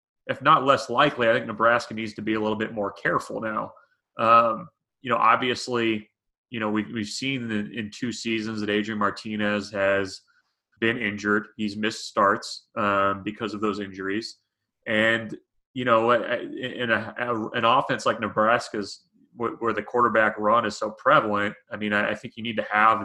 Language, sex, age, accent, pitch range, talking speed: English, male, 30-49, American, 105-115 Hz, 180 wpm